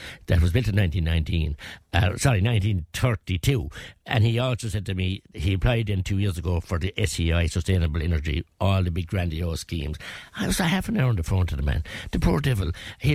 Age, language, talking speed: 60-79, English, 195 wpm